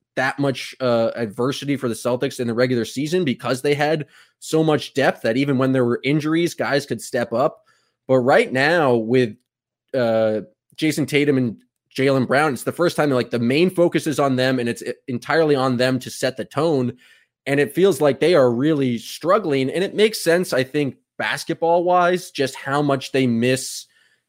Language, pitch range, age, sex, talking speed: English, 125-165 Hz, 20-39, male, 195 wpm